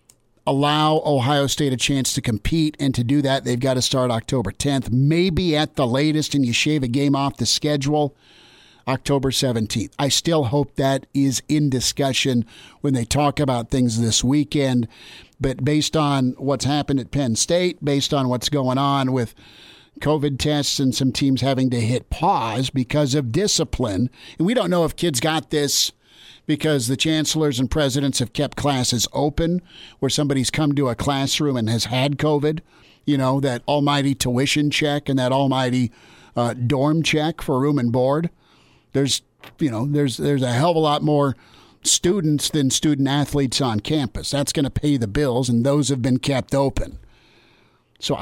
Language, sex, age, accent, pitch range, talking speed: English, male, 50-69, American, 130-150 Hz, 180 wpm